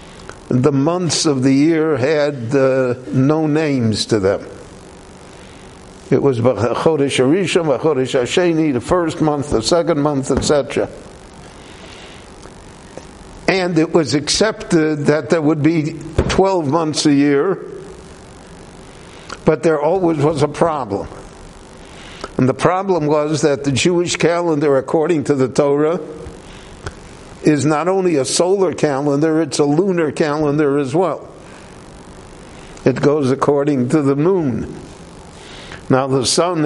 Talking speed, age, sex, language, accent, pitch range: 115 wpm, 60-79, male, English, American, 140-160 Hz